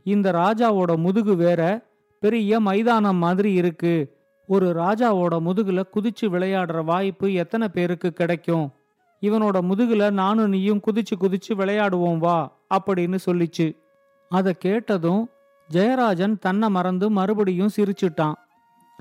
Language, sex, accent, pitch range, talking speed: Tamil, male, native, 170-210 Hz, 105 wpm